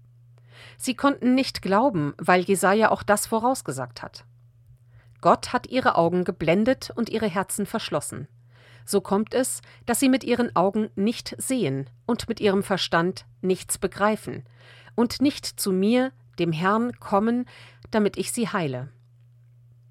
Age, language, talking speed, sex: 40-59, German, 140 wpm, female